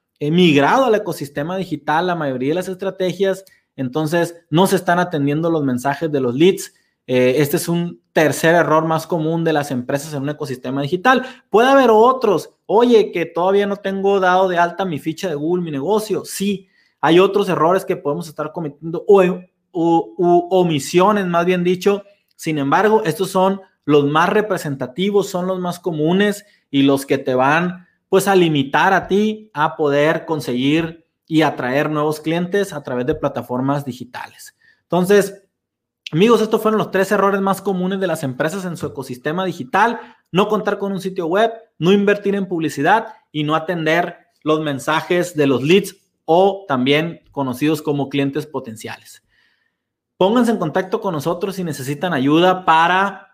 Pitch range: 150-195 Hz